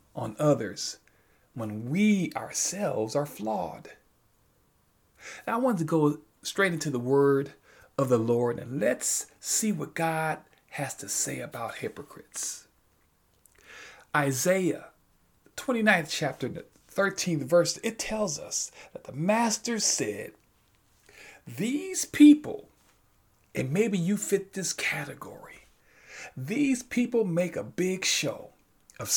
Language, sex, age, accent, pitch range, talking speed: English, male, 40-59, American, 130-205 Hz, 115 wpm